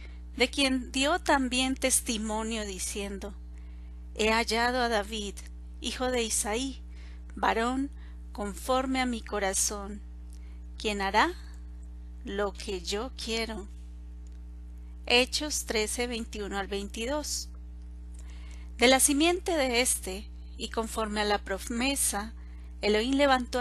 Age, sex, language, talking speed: 40-59, female, Spanish, 100 wpm